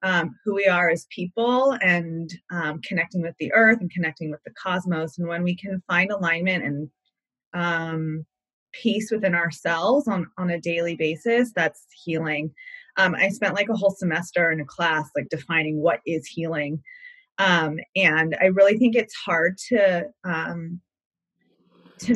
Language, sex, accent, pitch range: English, female, American, 165-210 Hz